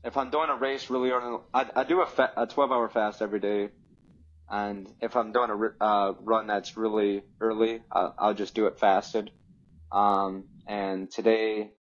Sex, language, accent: male, English, American